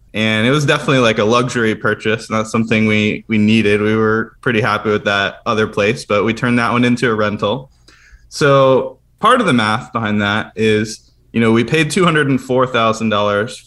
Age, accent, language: 20-39, American, English